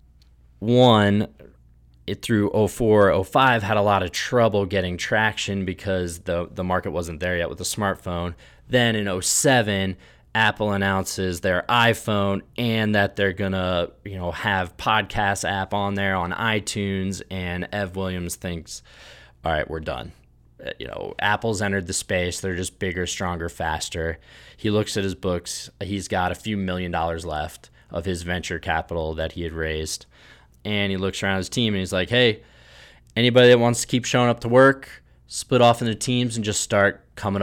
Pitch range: 85-105 Hz